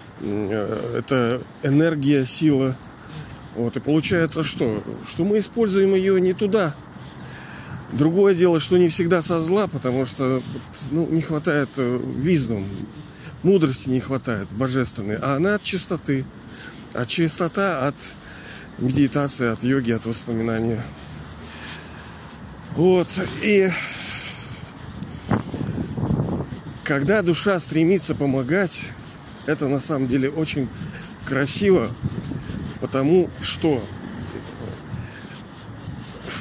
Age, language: 40-59, Russian